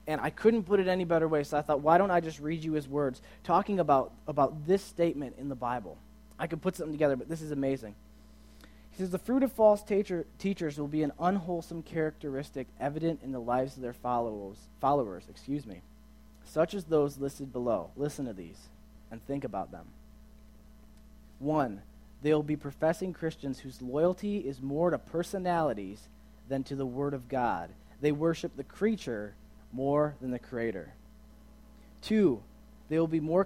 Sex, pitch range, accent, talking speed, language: male, 110-165 Hz, American, 180 wpm, English